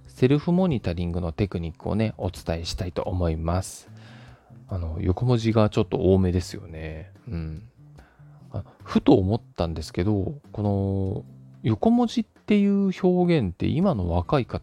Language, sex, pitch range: Japanese, male, 90-145 Hz